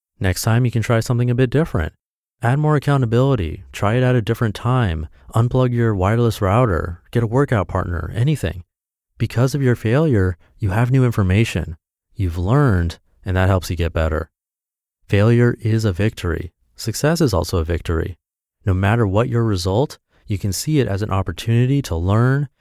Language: English